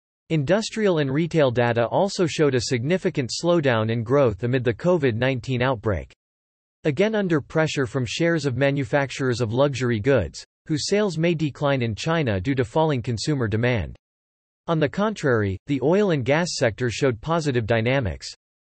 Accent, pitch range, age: American, 120-160 Hz, 40-59